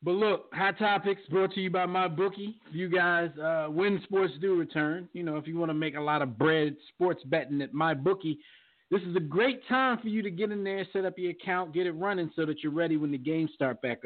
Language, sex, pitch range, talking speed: English, male, 125-170 Hz, 250 wpm